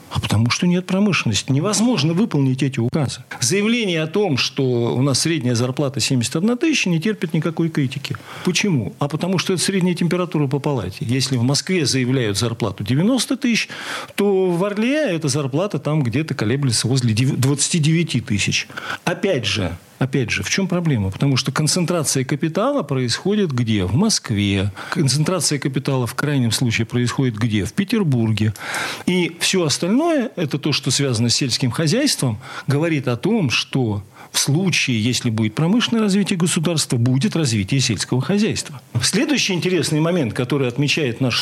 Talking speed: 150 wpm